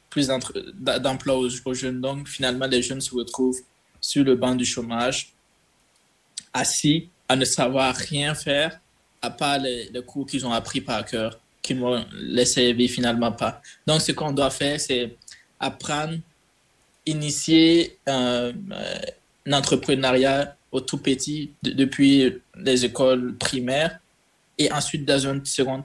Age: 20-39